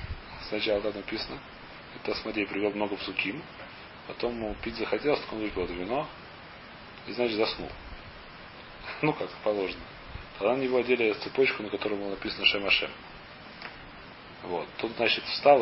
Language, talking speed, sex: Russian, 130 wpm, male